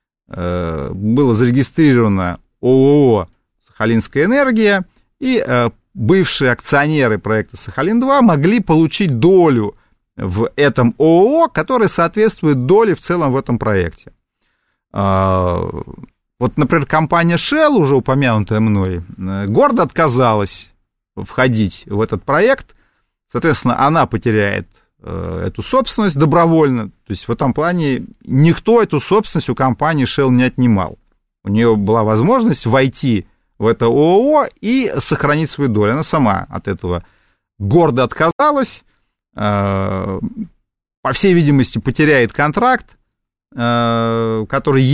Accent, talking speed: native, 105 wpm